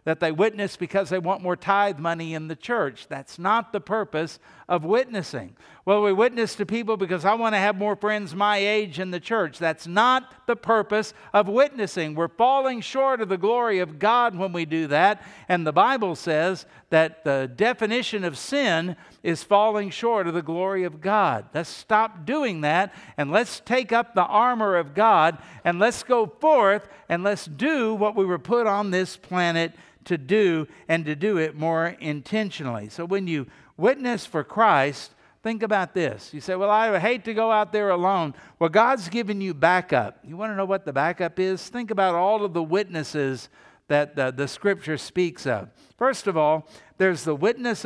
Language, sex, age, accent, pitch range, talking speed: English, male, 60-79, American, 165-215 Hz, 195 wpm